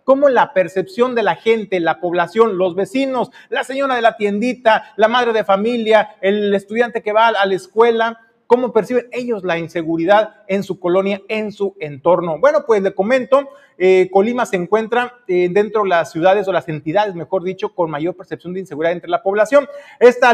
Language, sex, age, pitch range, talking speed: Spanish, male, 40-59, 185-240 Hz, 190 wpm